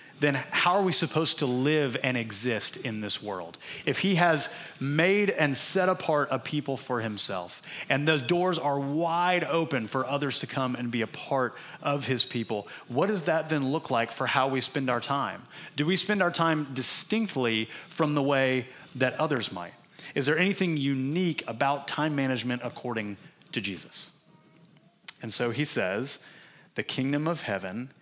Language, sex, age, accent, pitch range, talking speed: English, male, 30-49, American, 135-185 Hz, 175 wpm